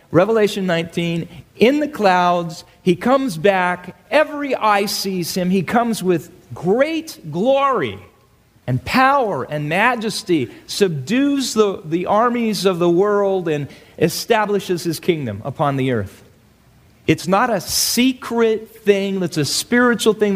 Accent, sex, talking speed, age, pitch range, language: American, male, 130 wpm, 40-59, 140-200 Hz, English